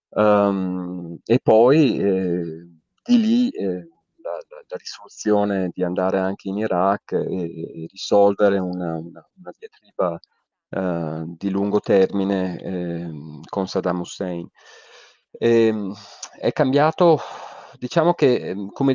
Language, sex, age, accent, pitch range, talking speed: Italian, male, 30-49, native, 90-120 Hz, 105 wpm